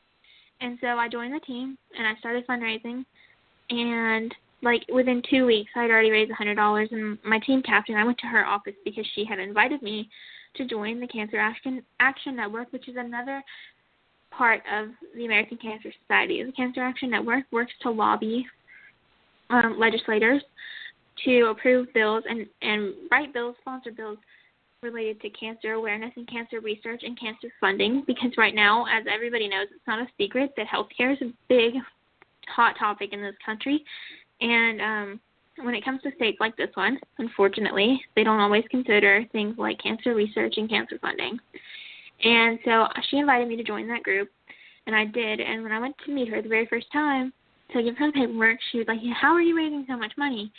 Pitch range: 215-255 Hz